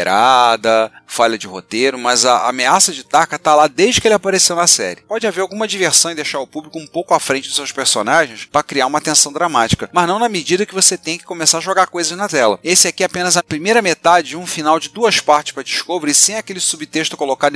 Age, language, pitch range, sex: 40-59, Portuguese, 130-175 Hz, male